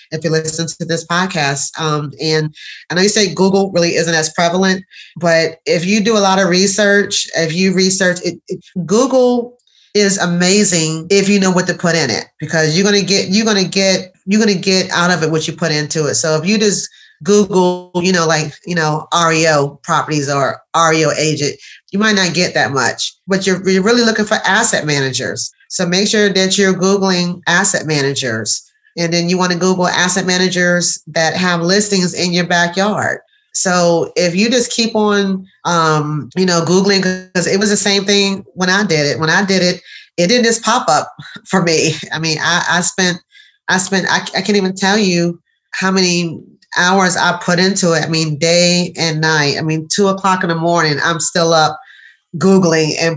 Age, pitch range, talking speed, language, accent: 30-49, 160-195 Hz, 205 wpm, English, American